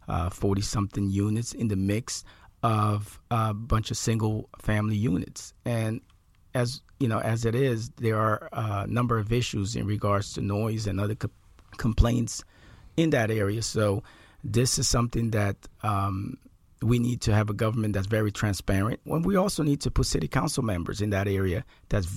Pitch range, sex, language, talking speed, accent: 100-125 Hz, male, English, 180 wpm, American